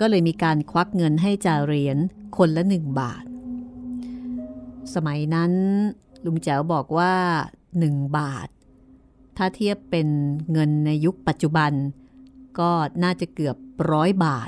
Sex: female